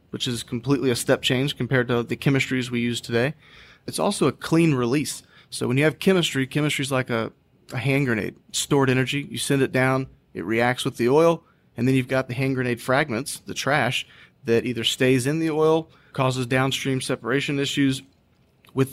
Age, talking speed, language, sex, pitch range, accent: 30-49, 195 wpm, English, male, 120-140 Hz, American